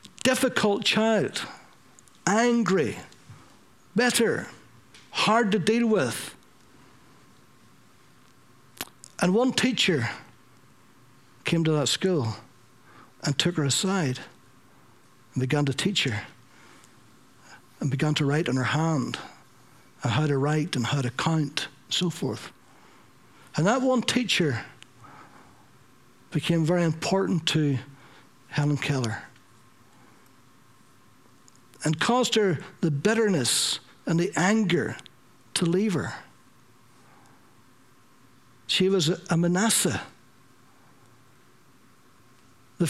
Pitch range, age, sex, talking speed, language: 130-195 Hz, 60-79, male, 95 wpm, English